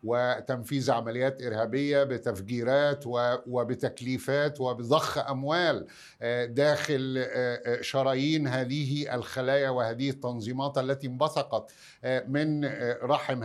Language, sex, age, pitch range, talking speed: Arabic, male, 50-69, 130-150 Hz, 75 wpm